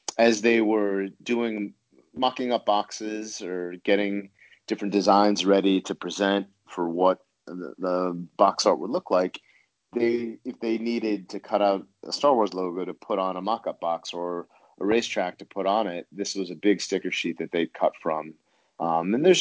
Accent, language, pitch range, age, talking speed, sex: American, English, 90-105 Hz, 30-49, 185 wpm, male